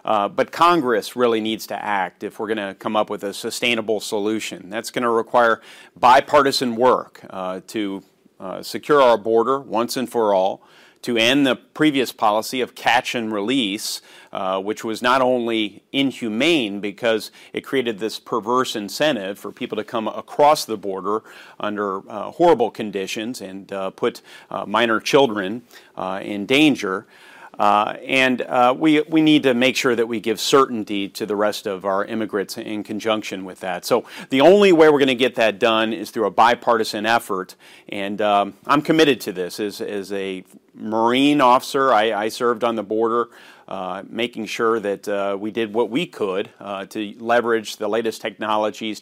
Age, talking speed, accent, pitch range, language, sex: 40-59, 175 wpm, American, 105-125 Hz, English, male